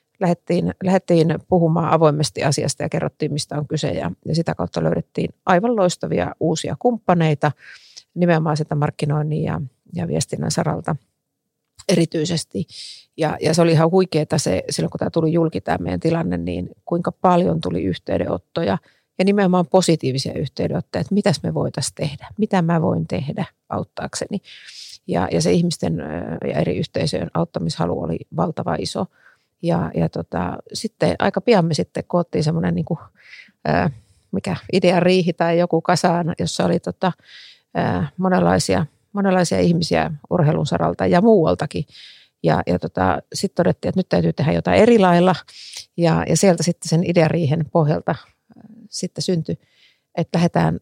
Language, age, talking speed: Finnish, 30-49, 145 wpm